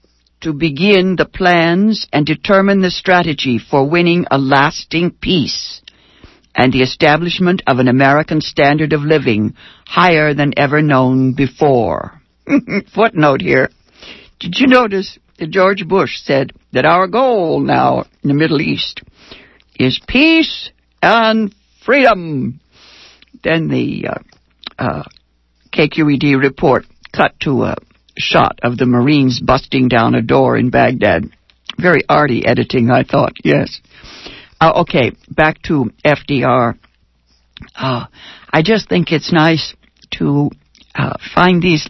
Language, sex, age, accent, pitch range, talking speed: English, female, 60-79, American, 130-180 Hz, 125 wpm